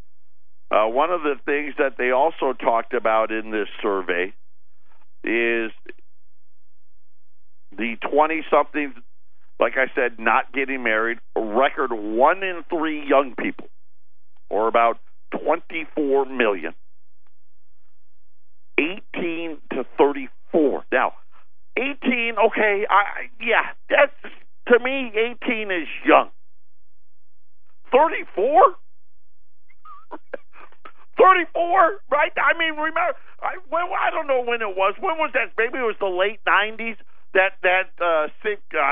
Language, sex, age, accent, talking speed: English, male, 50-69, American, 110 wpm